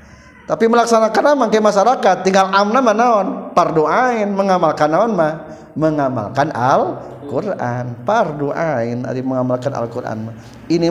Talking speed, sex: 105 wpm, male